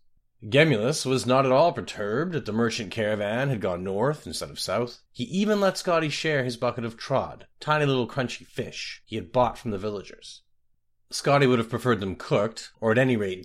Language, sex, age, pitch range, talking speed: English, male, 30-49, 110-150 Hz, 200 wpm